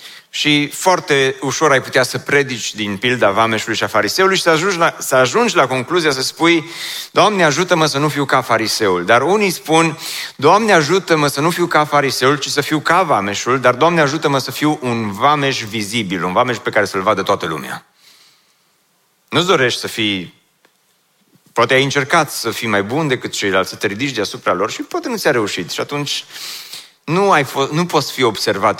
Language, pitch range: Romanian, 115-160 Hz